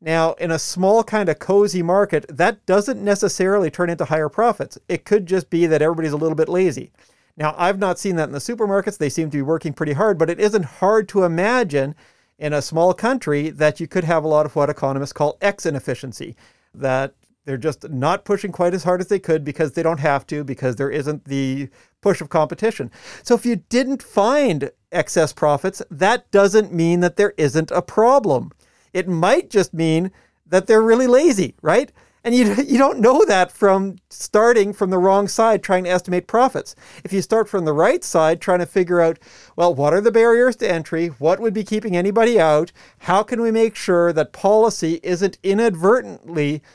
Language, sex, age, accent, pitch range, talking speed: English, male, 40-59, American, 155-205 Hz, 205 wpm